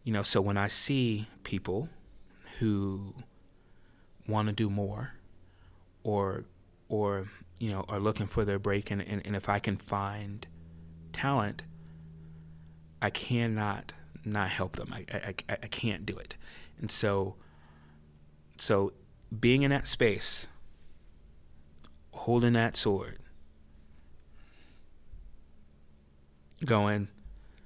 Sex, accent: male, American